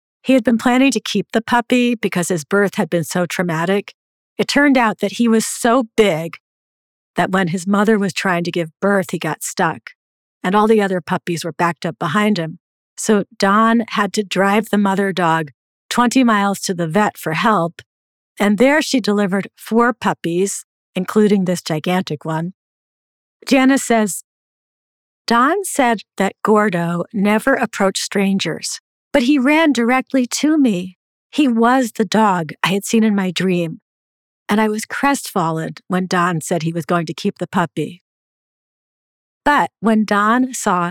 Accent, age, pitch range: American, 50-69, 175-235 Hz